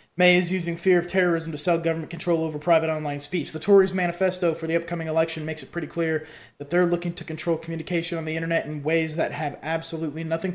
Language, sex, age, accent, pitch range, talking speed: English, male, 20-39, American, 155-175 Hz, 230 wpm